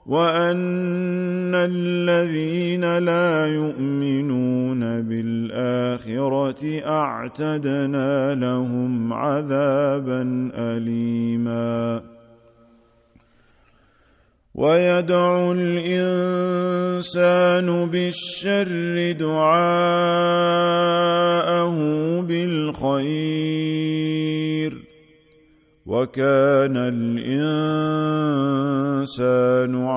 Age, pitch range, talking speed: 40-59, 135-175 Hz, 30 wpm